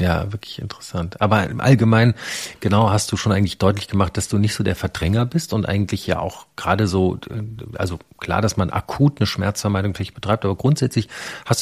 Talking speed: 195 wpm